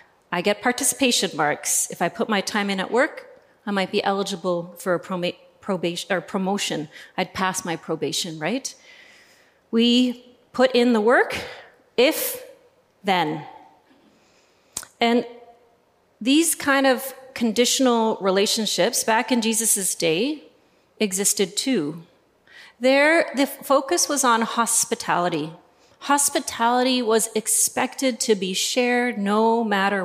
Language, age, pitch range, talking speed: English, 30-49, 190-250 Hz, 120 wpm